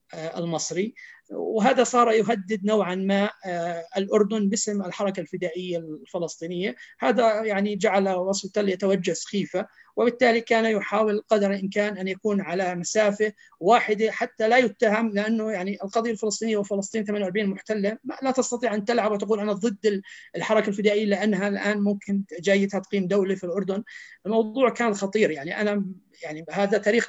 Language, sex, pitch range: Arabic, male, 185-220 Hz